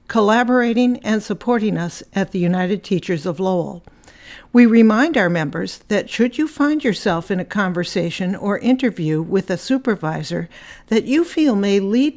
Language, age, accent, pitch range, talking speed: English, 60-79, American, 185-240 Hz, 160 wpm